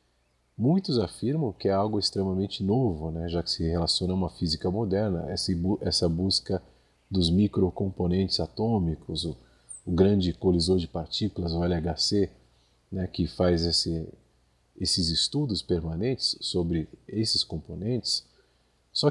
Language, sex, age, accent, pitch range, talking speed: Portuguese, male, 40-59, Brazilian, 80-105 Hz, 125 wpm